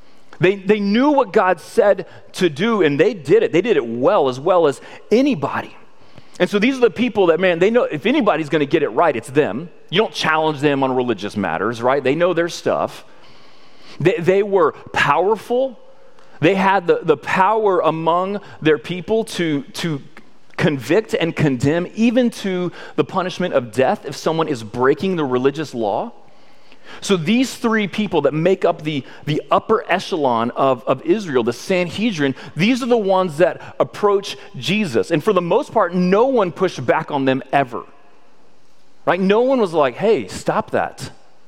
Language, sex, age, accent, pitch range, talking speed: English, male, 30-49, American, 150-205 Hz, 180 wpm